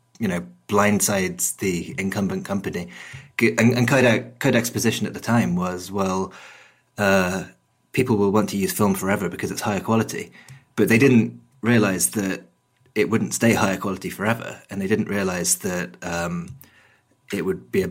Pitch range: 95-125 Hz